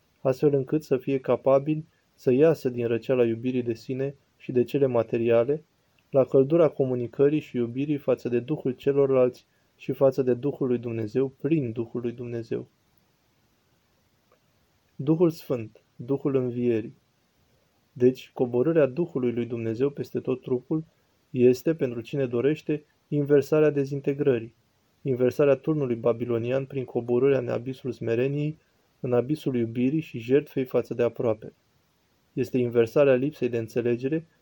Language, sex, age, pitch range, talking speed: Romanian, male, 20-39, 120-140 Hz, 125 wpm